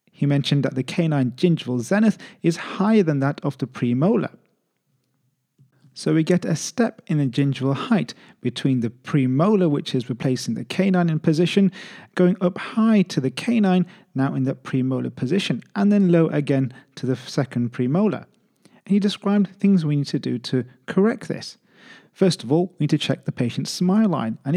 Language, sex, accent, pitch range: English, male, British, 130-185 Hz